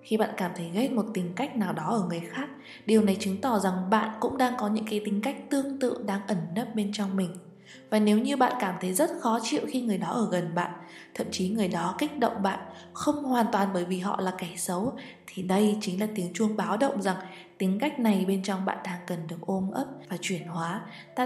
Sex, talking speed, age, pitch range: female, 250 wpm, 20-39, 185-230 Hz